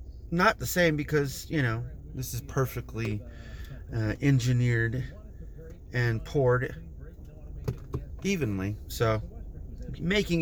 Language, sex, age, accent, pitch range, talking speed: English, male, 30-49, American, 110-165 Hz, 90 wpm